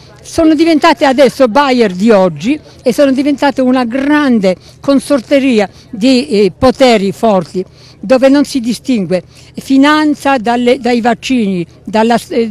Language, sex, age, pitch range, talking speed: Italian, female, 60-79, 190-255 Hz, 125 wpm